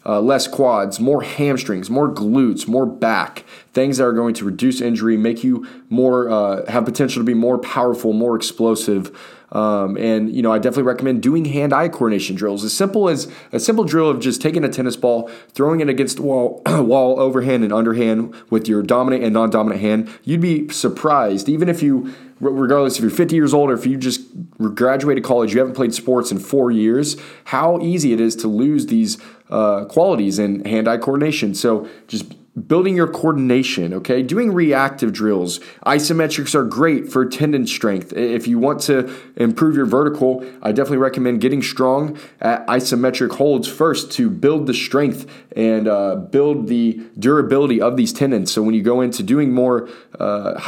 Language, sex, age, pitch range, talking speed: English, male, 20-39, 115-140 Hz, 185 wpm